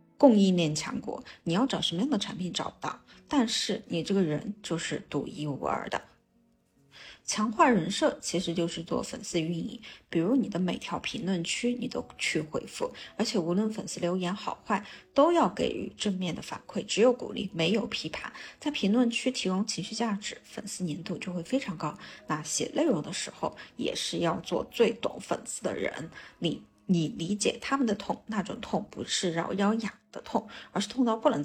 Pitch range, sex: 170-235 Hz, female